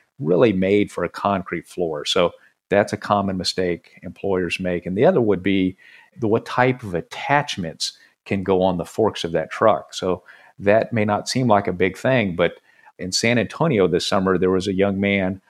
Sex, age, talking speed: male, 50-69, 195 wpm